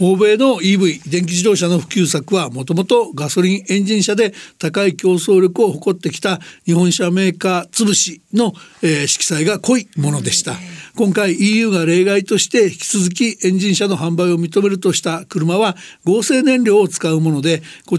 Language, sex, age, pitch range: Japanese, male, 60-79, 170-210 Hz